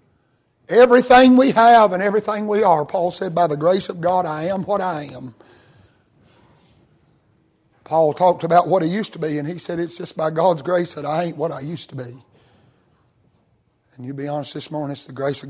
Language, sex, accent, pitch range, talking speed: English, male, American, 130-170 Hz, 205 wpm